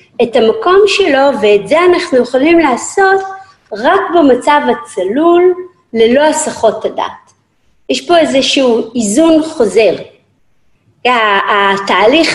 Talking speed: 95 wpm